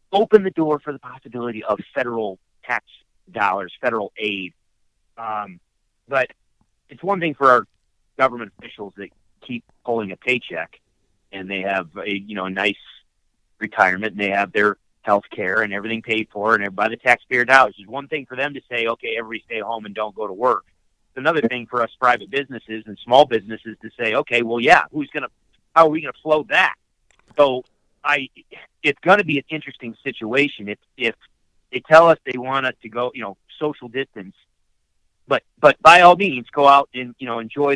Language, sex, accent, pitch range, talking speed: English, male, American, 105-140 Hz, 200 wpm